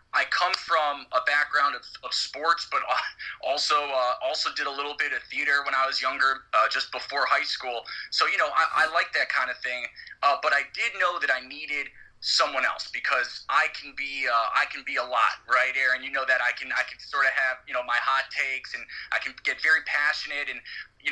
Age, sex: 30-49, male